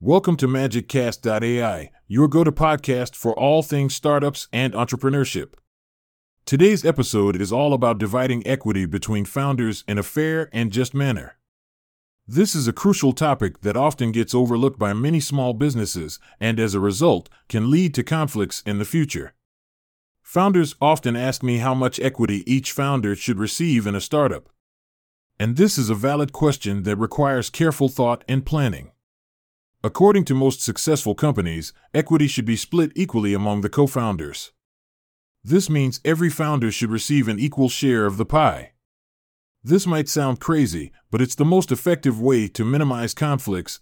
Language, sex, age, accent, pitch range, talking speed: English, male, 30-49, American, 105-145 Hz, 155 wpm